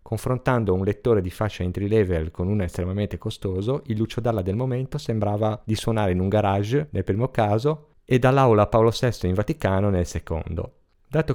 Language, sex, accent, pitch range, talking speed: Italian, male, native, 95-130 Hz, 180 wpm